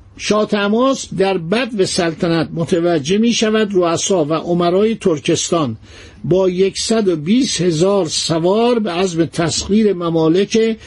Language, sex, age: Persian, male, 50-69